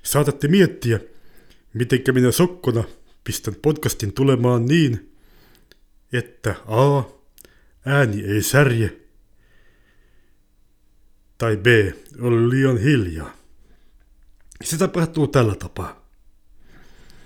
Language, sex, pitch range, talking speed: Finnish, male, 100-130 Hz, 80 wpm